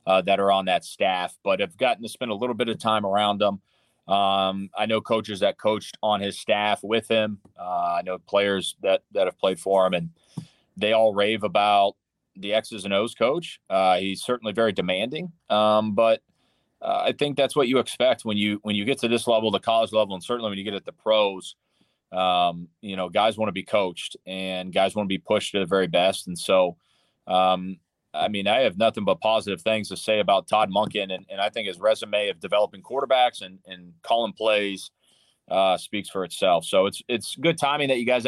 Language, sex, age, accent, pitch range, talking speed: English, male, 30-49, American, 95-115 Hz, 225 wpm